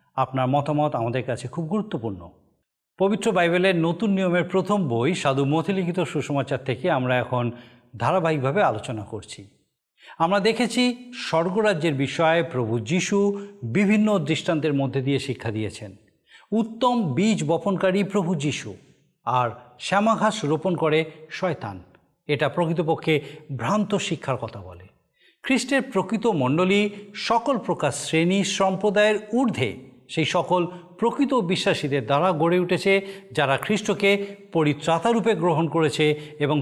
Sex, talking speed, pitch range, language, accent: male, 115 wpm, 135-200 Hz, Bengali, native